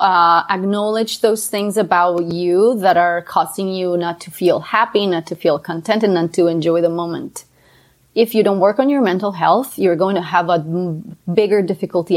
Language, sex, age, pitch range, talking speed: English, female, 30-49, 170-210 Hz, 195 wpm